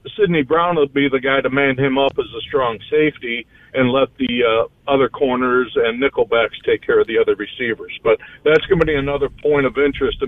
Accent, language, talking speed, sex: American, English, 220 wpm, male